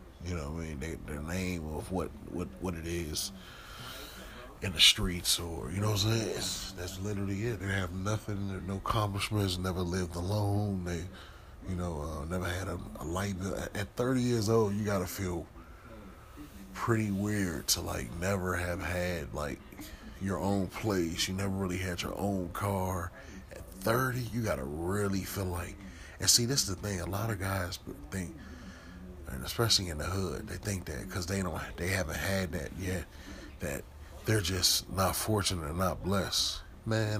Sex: male